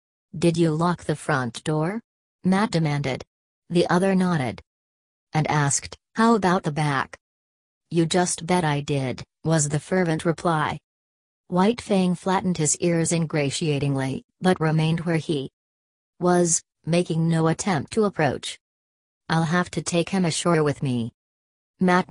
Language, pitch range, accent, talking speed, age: English, 130-175 Hz, American, 140 wpm, 40-59